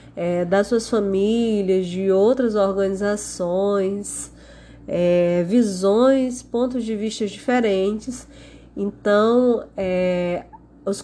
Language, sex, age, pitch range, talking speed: Portuguese, female, 20-39, 185-235 Hz, 70 wpm